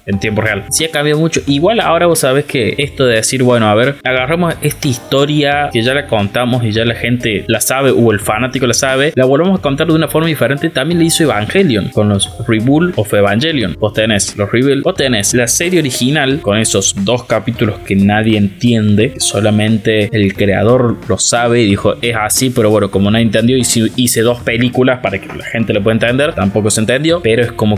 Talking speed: 220 wpm